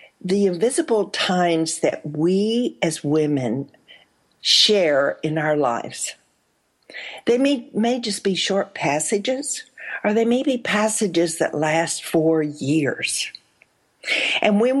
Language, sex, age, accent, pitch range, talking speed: English, female, 60-79, American, 155-225 Hz, 120 wpm